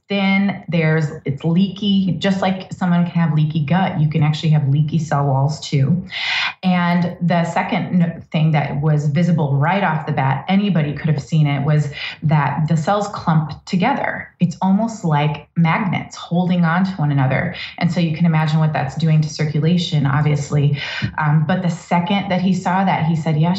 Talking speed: 185 wpm